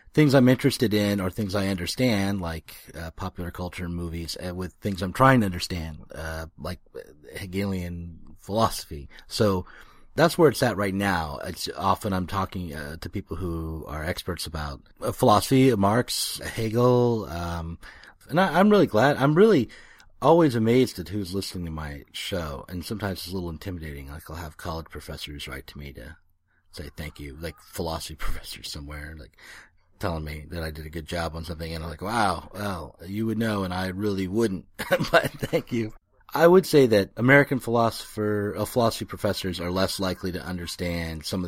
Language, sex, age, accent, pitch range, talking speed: English, male, 30-49, American, 80-110 Hz, 185 wpm